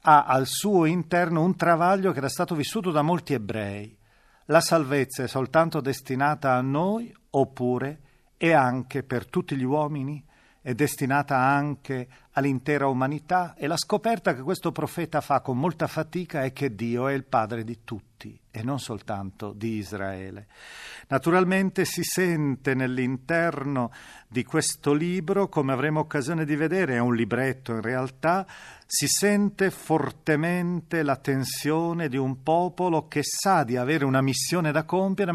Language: Italian